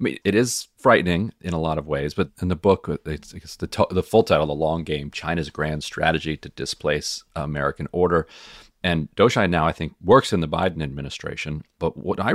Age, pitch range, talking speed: 40-59, 75-95 Hz, 215 wpm